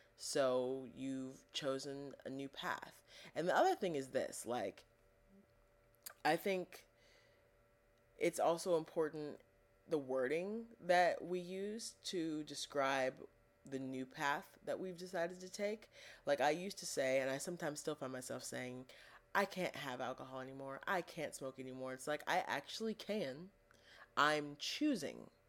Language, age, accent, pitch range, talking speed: English, 30-49, American, 125-155 Hz, 145 wpm